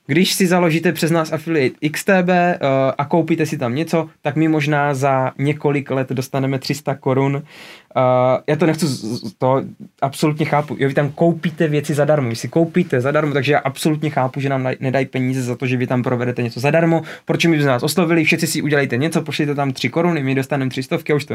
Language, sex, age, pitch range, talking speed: Czech, male, 20-39, 130-160 Hz, 205 wpm